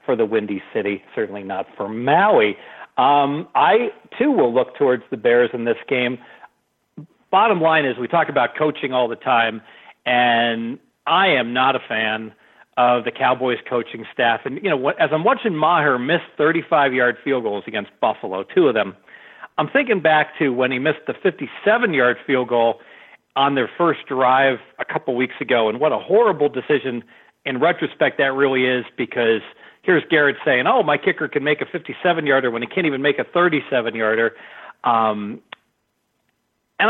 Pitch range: 120-155 Hz